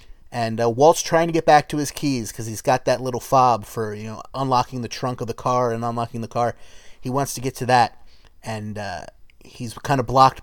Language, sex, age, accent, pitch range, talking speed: English, male, 30-49, American, 115-140 Hz, 235 wpm